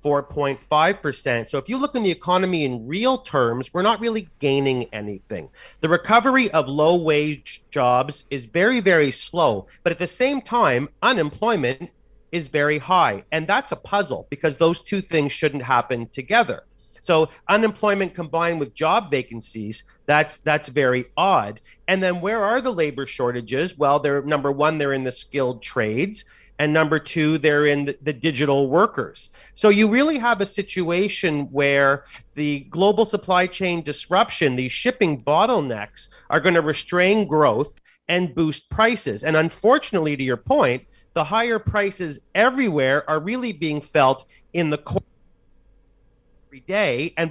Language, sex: English, male